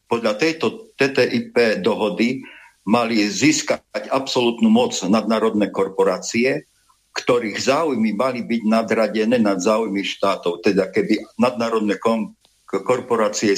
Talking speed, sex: 100 wpm, male